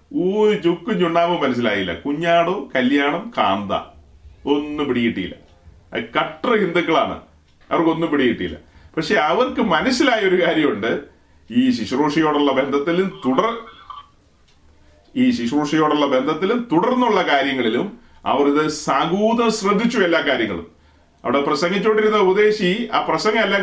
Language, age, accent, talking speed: Malayalam, 30-49, native, 100 wpm